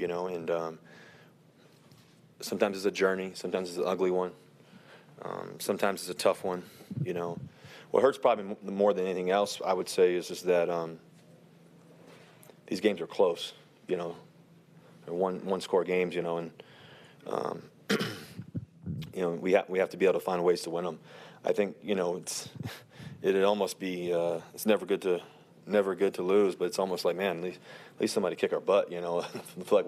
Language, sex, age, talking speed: English, male, 30-49, 195 wpm